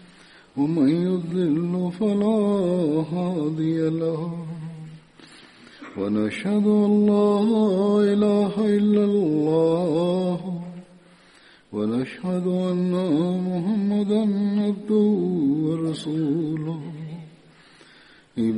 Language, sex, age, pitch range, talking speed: Swahili, male, 50-69, 160-205 Hz, 55 wpm